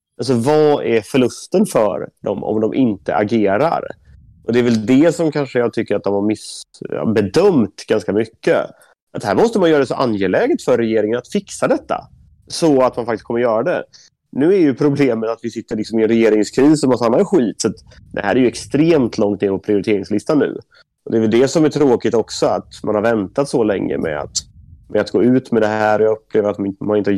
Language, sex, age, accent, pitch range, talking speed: English, male, 30-49, Swedish, 105-135 Hz, 225 wpm